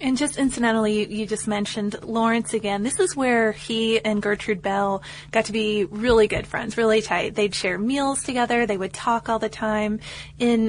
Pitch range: 205-235 Hz